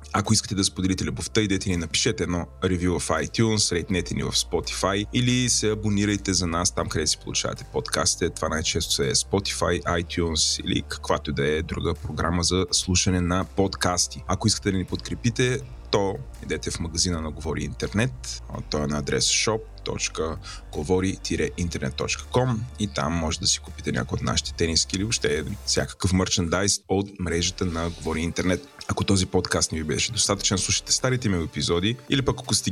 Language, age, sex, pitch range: Bulgarian, 30-49, male, 85-105 Hz